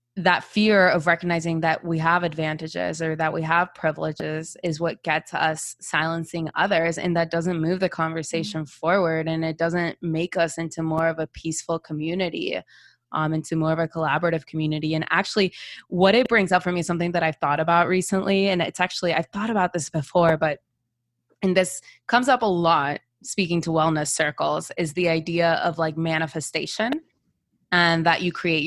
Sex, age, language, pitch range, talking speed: female, 20-39, English, 160-185 Hz, 185 wpm